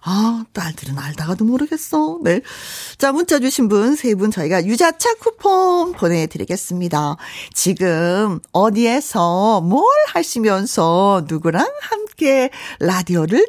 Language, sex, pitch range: Korean, female, 180-300 Hz